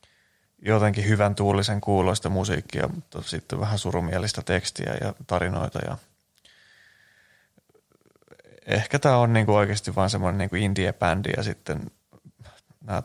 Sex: male